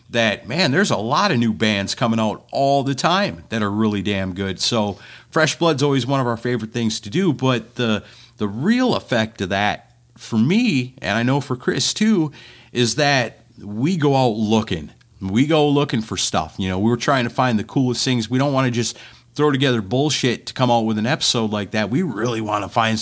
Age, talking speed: 40-59, 220 wpm